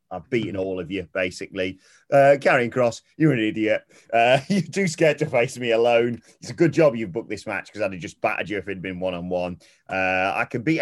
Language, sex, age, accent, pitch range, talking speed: English, male, 30-49, British, 100-140 Hz, 245 wpm